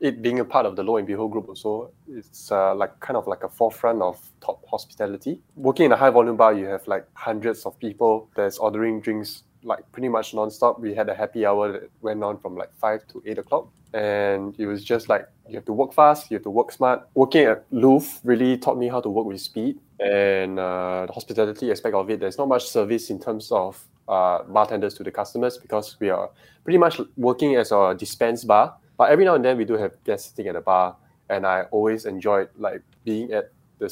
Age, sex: 20-39, male